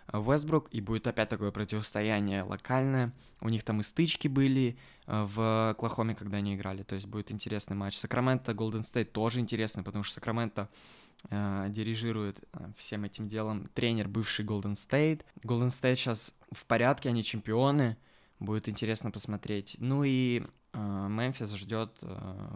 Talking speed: 145 wpm